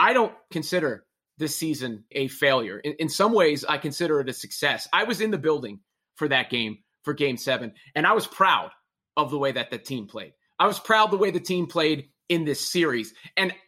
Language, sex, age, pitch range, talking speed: English, male, 30-49, 160-235 Hz, 220 wpm